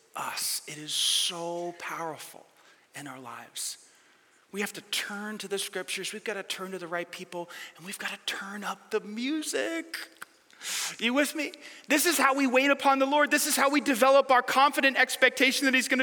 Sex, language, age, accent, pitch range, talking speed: male, English, 30-49, American, 195-255 Hz, 200 wpm